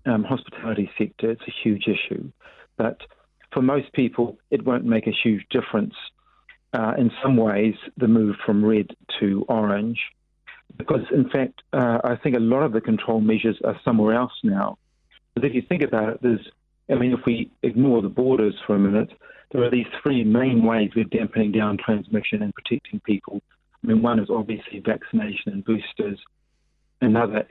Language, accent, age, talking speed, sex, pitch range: English, British, 40-59, 180 wpm, male, 105-130 Hz